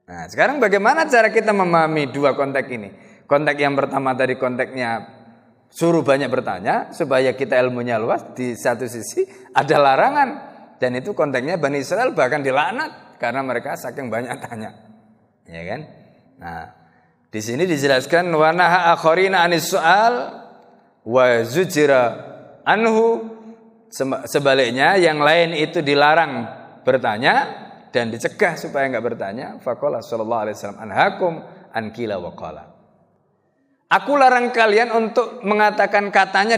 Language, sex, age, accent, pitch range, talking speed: Indonesian, male, 20-39, native, 130-205 Hz, 120 wpm